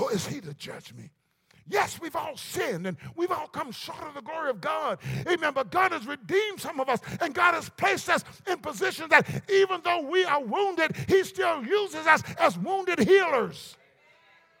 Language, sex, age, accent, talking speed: English, male, 50-69, American, 195 wpm